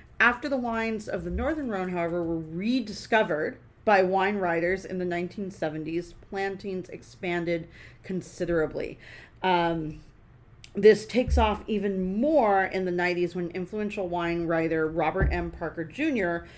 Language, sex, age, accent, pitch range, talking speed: English, female, 40-59, American, 165-205 Hz, 130 wpm